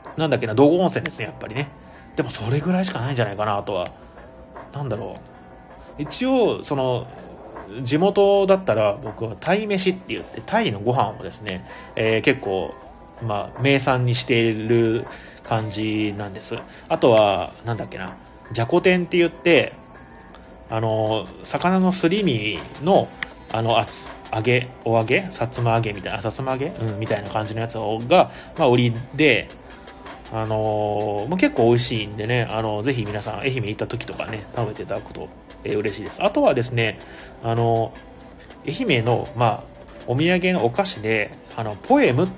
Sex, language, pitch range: male, Japanese, 110-160 Hz